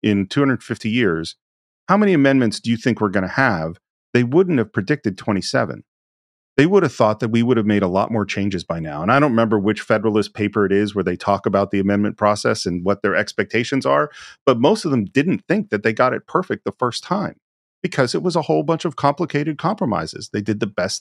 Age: 40-59